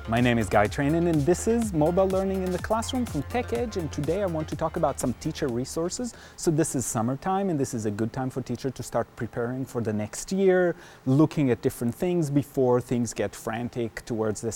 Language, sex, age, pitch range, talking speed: English, male, 30-49, 125-170 Hz, 225 wpm